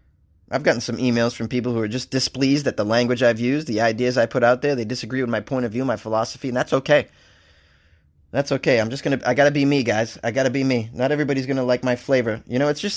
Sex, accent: male, American